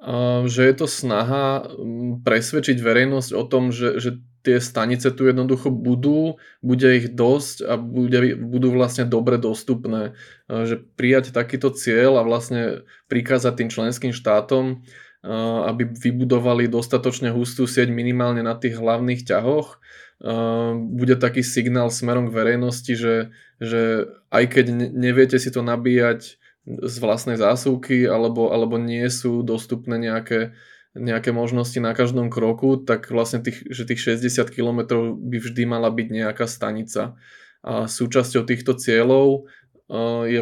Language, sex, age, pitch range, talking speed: Slovak, male, 20-39, 115-125 Hz, 135 wpm